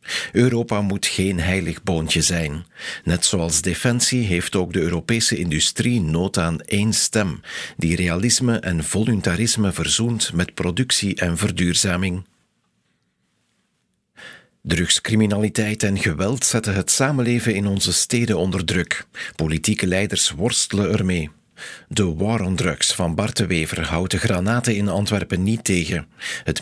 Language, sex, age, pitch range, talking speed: Dutch, male, 50-69, 85-110 Hz, 130 wpm